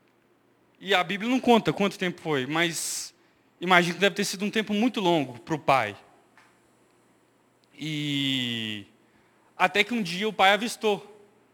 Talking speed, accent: 150 wpm, Brazilian